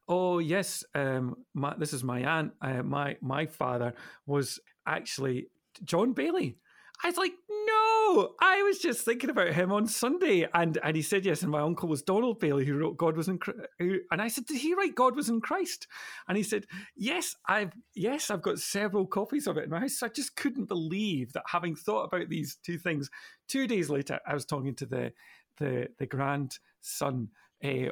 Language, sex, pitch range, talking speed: English, male, 140-210 Hz, 200 wpm